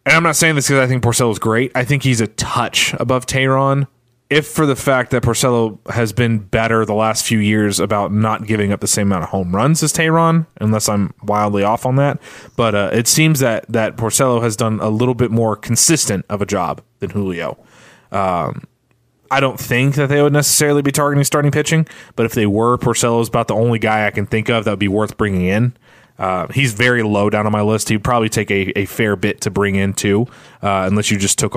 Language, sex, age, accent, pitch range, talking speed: English, male, 20-39, American, 105-130 Hz, 230 wpm